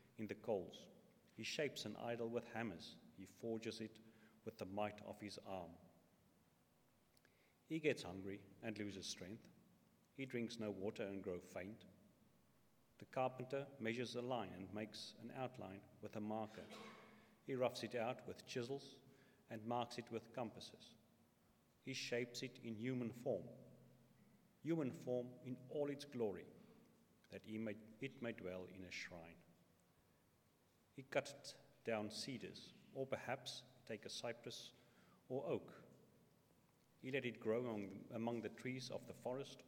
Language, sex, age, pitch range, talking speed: English, male, 40-59, 105-130 Hz, 145 wpm